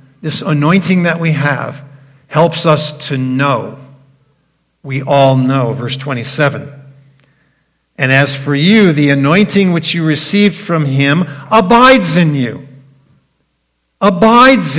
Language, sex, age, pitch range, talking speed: English, male, 50-69, 140-195 Hz, 120 wpm